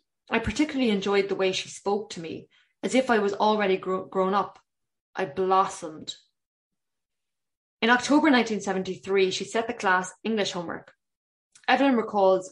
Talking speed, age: 140 wpm, 20-39